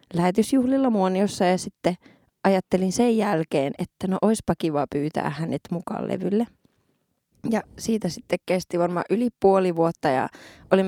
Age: 20-39